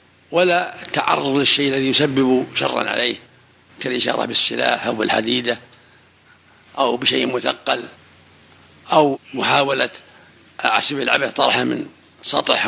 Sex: male